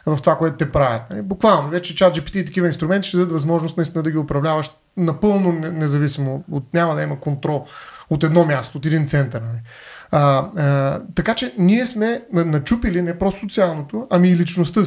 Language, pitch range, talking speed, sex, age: Bulgarian, 160-200 Hz, 180 wpm, male, 30-49